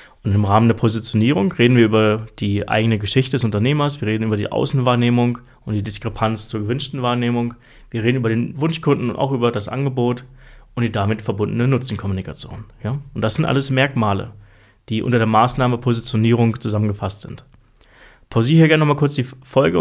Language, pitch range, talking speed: German, 110-130 Hz, 180 wpm